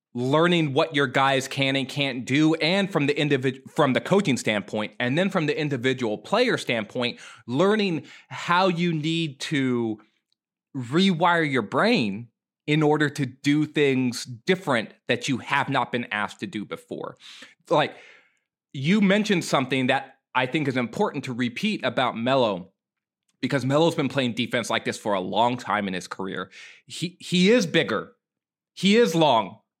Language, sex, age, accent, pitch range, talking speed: English, male, 20-39, American, 130-175 Hz, 160 wpm